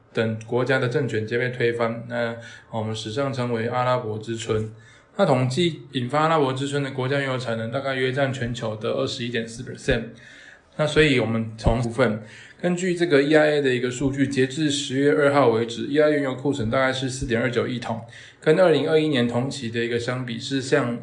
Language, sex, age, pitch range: Chinese, male, 20-39, 115-140 Hz